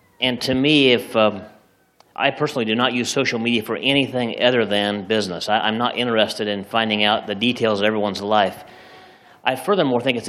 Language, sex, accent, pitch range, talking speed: English, male, American, 110-140 Hz, 190 wpm